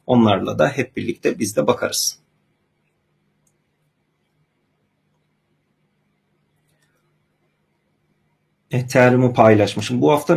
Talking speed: 65 wpm